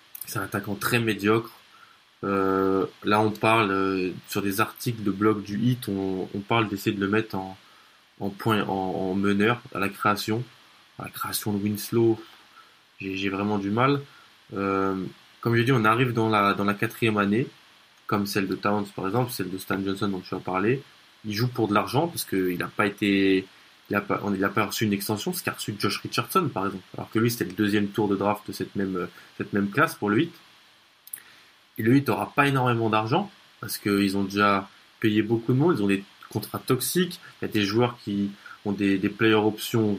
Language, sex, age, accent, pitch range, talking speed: French, male, 20-39, French, 100-115 Hz, 215 wpm